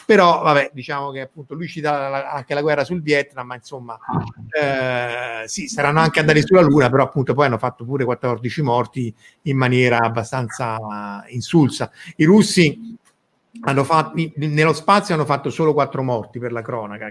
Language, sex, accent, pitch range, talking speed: Italian, male, native, 125-155 Hz, 170 wpm